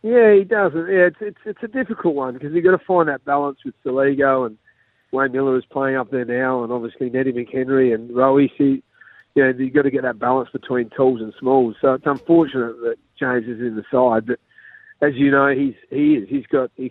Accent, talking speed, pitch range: Australian, 225 wpm, 120-145 Hz